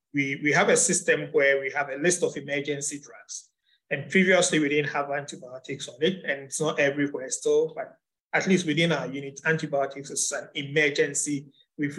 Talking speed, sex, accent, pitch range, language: 185 wpm, male, Nigerian, 140-160 Hz, English